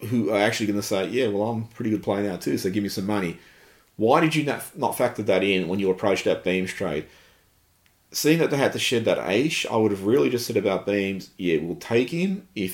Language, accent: English, Australian